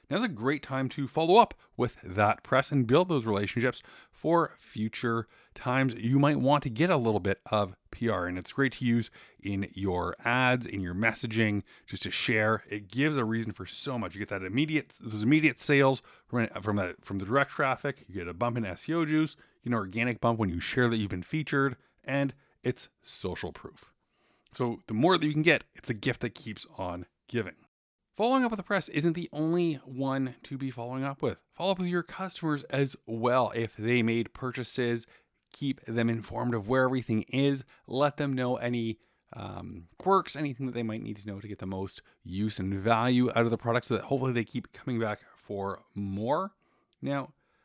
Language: English